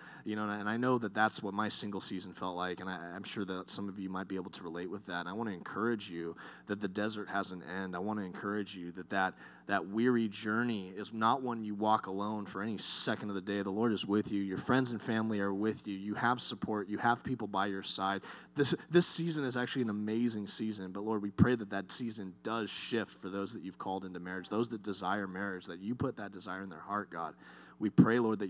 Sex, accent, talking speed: male, American, 260 wpm